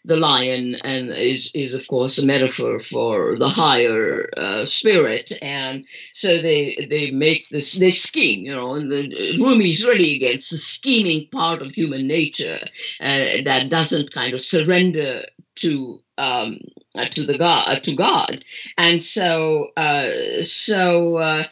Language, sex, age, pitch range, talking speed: English, female, 50-69, 145-185 Hz, 150 wpm